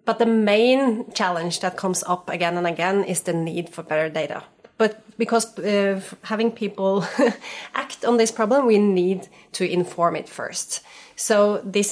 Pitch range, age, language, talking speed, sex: 170-215 Hz, 30-49, English, 165 wpm, female